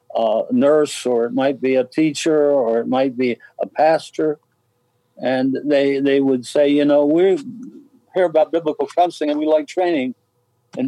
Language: English